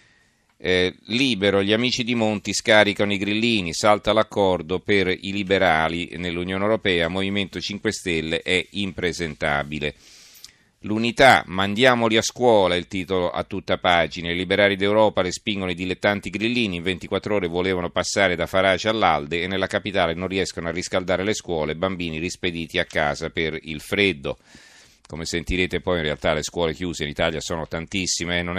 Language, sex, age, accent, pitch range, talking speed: Italian, male, 40-59, native, 85-105 Hz, 160 wpm